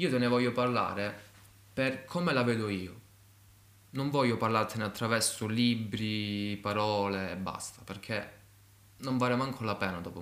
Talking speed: 145 wpm